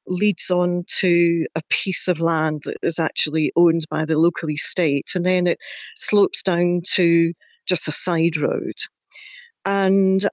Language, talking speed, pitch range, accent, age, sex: English, 150 wpm, 180-220 Hz, British, 40-59, female